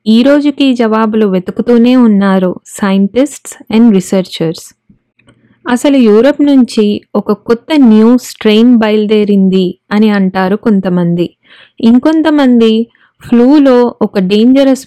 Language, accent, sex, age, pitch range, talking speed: Telugu, native, female, 20-39, 200-250 Hz, 95 wpm